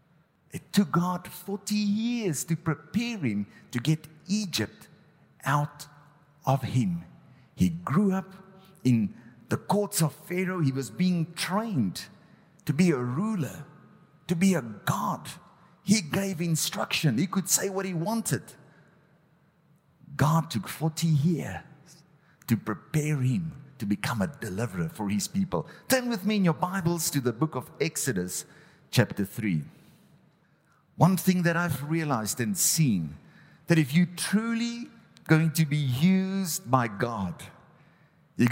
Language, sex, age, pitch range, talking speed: English, male, 50-69, 130-180 Hz, 135 wpm